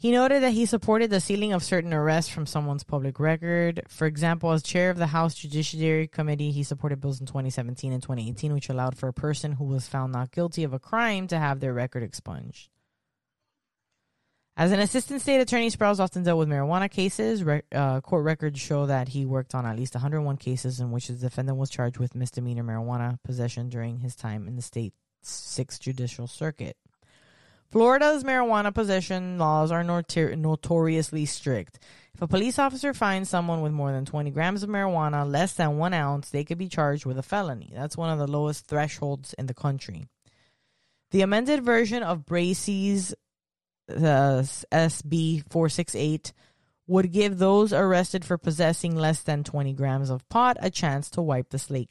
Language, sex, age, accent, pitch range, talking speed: English, female, 20-39, American, 135-180 Hz, 180 wpm